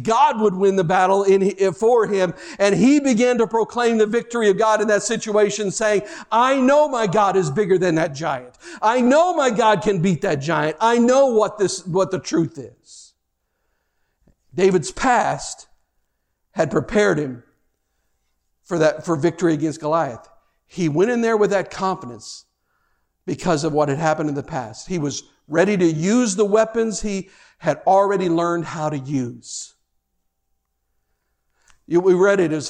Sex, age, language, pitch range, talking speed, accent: male, 50-69, English, 155-200 Hz, 165 wpm, American